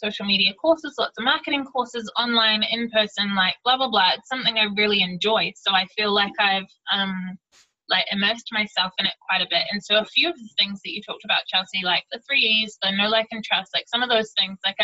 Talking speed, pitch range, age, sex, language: 240 wpm, 195-220 Hz, 20-39, female, English